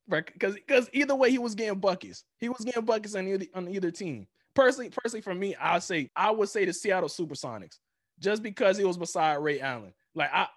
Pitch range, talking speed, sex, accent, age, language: 170-225 Hz, 215 wpm, male, American, 20-39, English